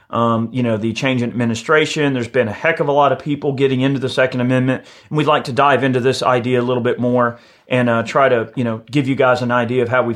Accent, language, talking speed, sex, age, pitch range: American, English, 290 wpm, male, 30-49, 120-140 Hz